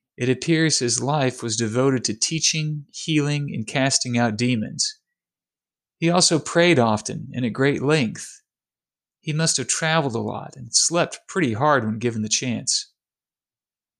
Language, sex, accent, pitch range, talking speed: English, male, American, 115-145 Hz, 150 wpm